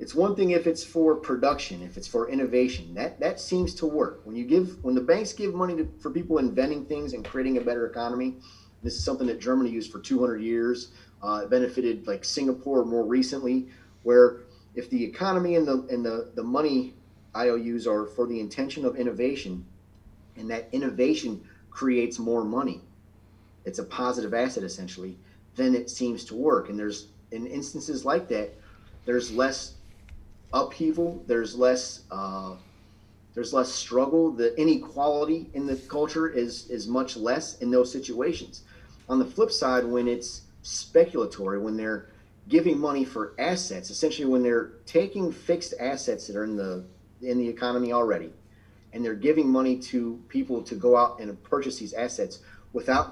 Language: English